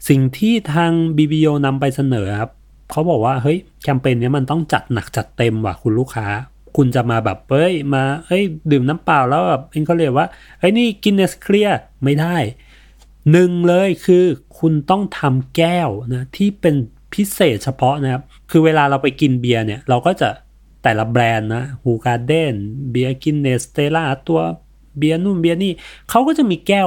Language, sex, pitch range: Thai, male, 120-160 Hz